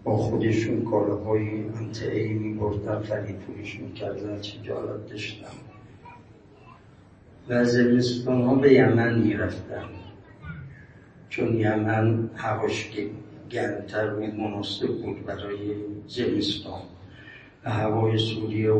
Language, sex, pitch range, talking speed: Persian, male, 105-120 Hz, 100 wpm